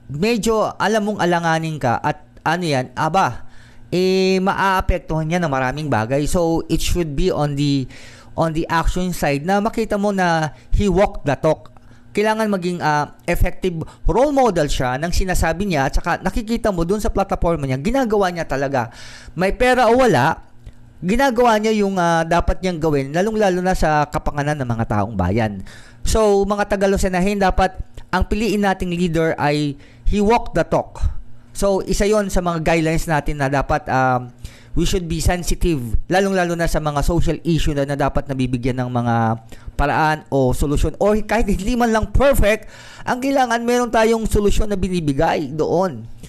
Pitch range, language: 140-200 Hz, Filipino